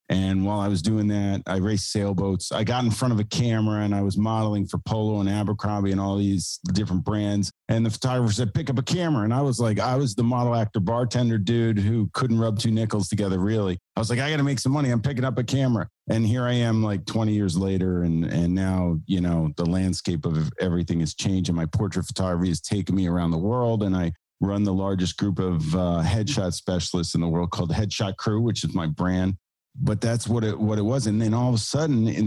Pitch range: 95-125 Hz